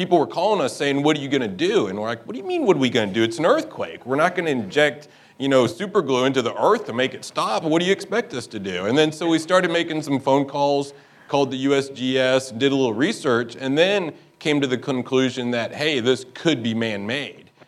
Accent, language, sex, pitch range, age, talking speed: American, English, male, 110-130 Hz, 30-49, 260 wpm